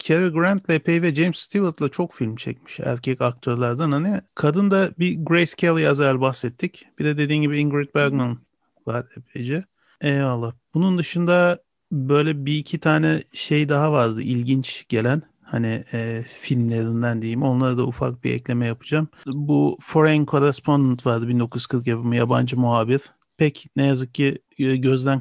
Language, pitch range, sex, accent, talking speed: Turkish, 125-155 Hz, male, native, 145 wpm